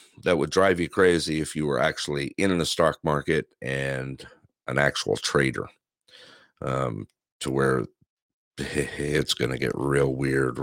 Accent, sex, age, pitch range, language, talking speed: American, male, 50-69, 70-90 Hz, English, 145 wpm